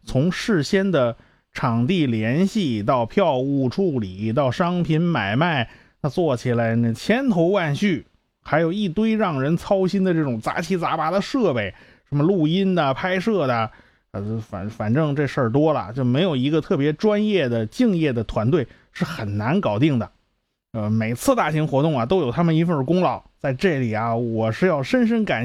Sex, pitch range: male, 120-190 Hz